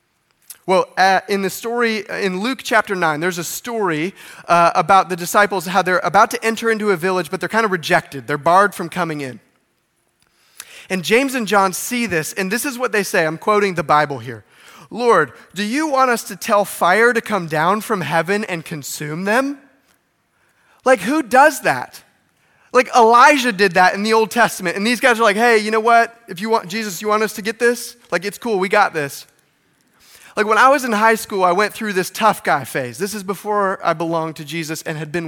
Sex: male